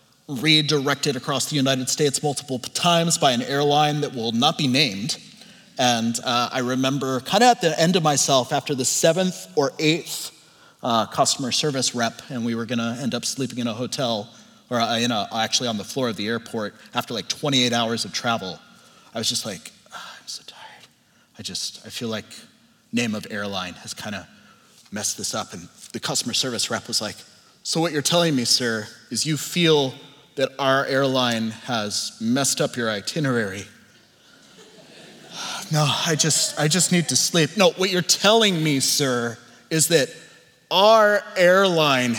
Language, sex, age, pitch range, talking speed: English, male, 30-49, 120-165 Hz, 180 wpm